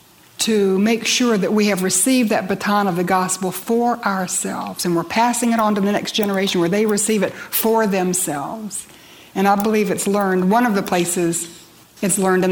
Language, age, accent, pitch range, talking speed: English, 60-79, American, 175-215 Hz, 195 wpm